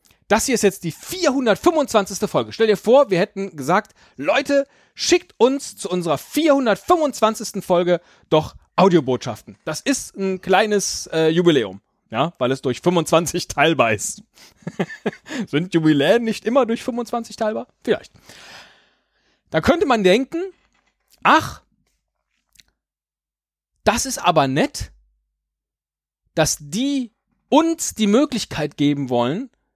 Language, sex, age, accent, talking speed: German, male, 40-59, German, 120 wpm